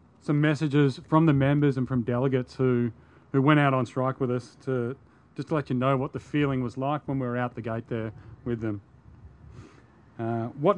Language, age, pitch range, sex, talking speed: English, 30-49, 125-155 Hz, male, 205 wpm